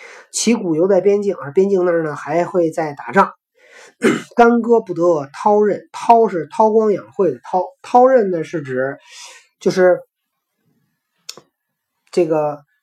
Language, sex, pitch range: Chinese, male, 170-235 Hz